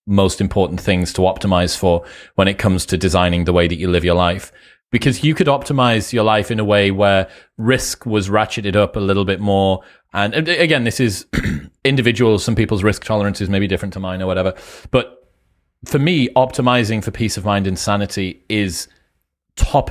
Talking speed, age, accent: 195 wpm, 30-49, British